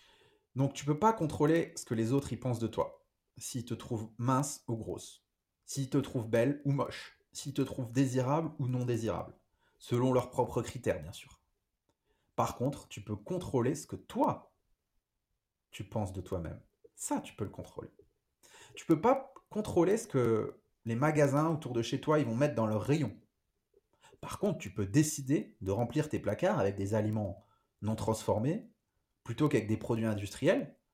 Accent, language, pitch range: French, French, 110-150 Hz